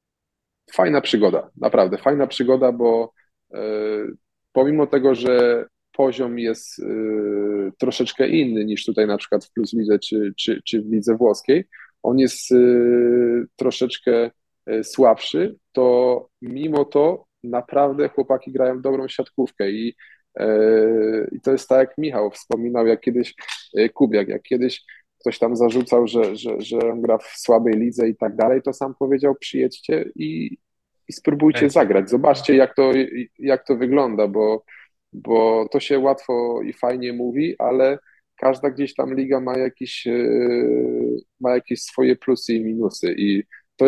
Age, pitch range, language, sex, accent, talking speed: 20-39, 110-135 Hz, Polish, male, native, 135 wpm